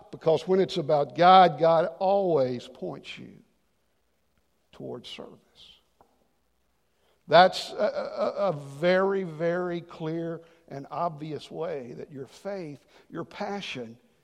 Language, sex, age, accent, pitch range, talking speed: English, male, 60-79, American, 150-190 Hz, 110 wpm